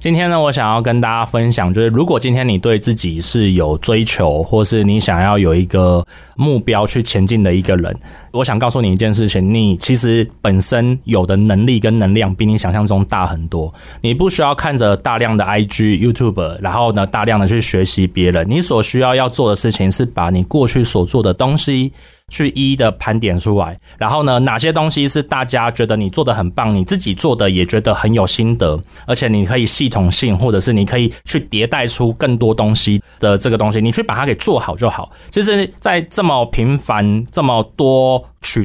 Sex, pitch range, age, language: male, 100-125 Hz, 20-39, Chinese